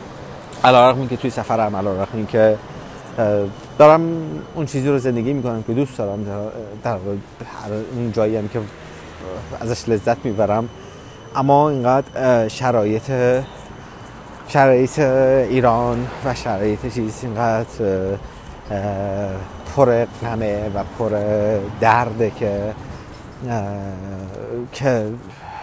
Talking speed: 90 wpm